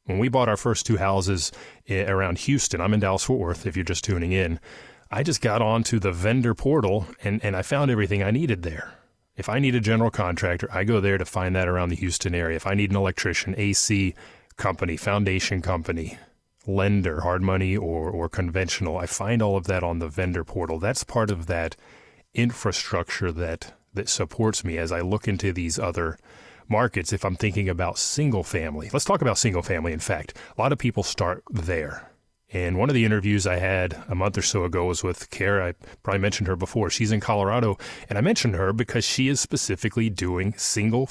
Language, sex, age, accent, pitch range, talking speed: English, male, 30-49, American, 90-110 Hz, 205 wpm